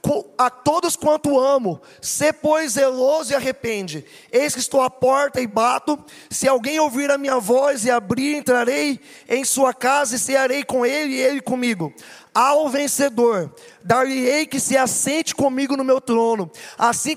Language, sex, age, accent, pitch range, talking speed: Portuguese, male, 20-39, Brazilian, 245-285 Hz, 165 wpm